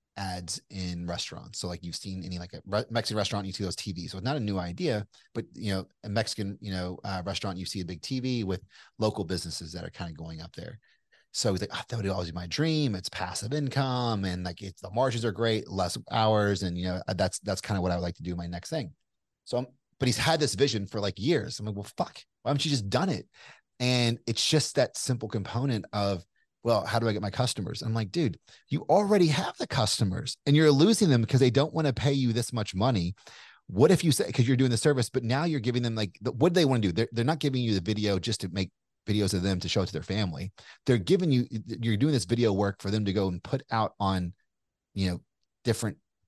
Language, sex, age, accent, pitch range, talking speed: English, male, 30-49, American, 95-125 Hz, 260 wpm